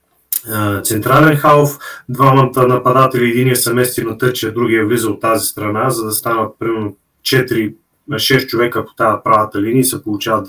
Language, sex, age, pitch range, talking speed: Bulgarian, male, 30-49, 115-140 Hz, 155 wpm